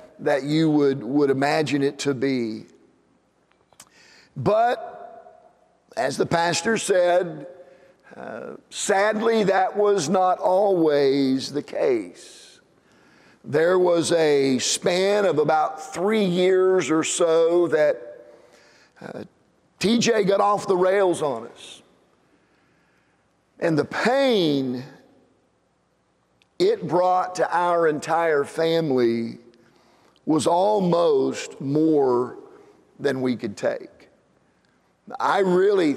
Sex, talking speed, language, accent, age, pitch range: male, 95 wpm, English, American, 50-69, 140-195 Hz